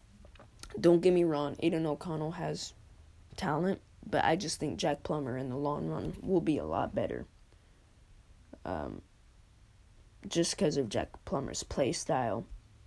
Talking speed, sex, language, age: 145 wpm, female, English, 20-39